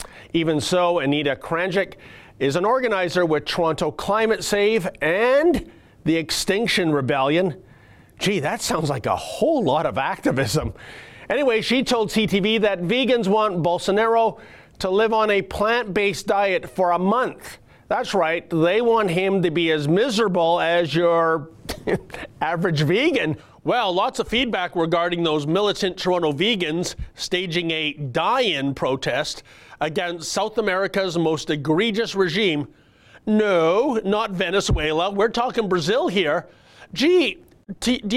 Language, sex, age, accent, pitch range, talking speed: English, male, 40-59, American, 165-220 Hz, 130 wpm